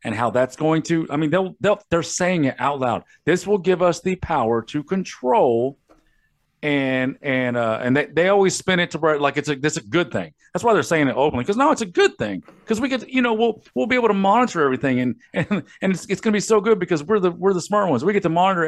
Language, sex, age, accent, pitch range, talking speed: English, male, 40-59, American, 115-170 Hz, 275 wpm